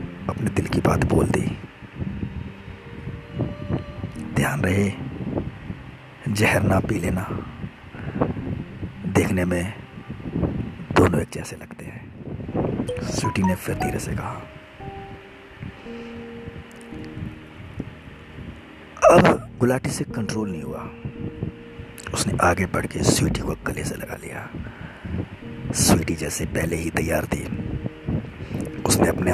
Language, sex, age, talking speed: Hindi, male, 60-79, 95 wpm